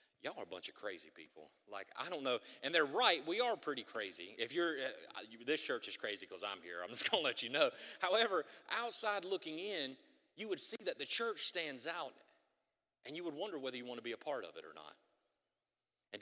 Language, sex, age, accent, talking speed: English, male, 30-49, American, 235 wpm